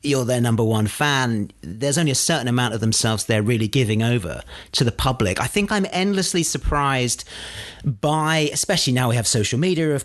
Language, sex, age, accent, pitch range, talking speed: English, male, 40-59, British, 105-140 Hz, 190 wpm